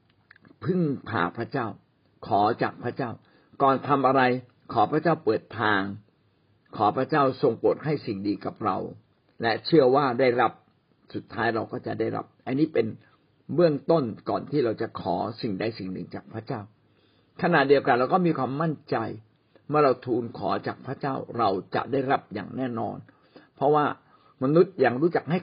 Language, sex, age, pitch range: Thai, male, 60-79, 105-150 Hz